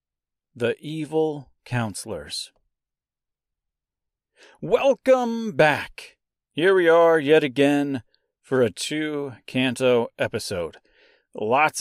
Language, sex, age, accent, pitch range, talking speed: English, male, 40-59, American, 120-165 Hz, 80 wpm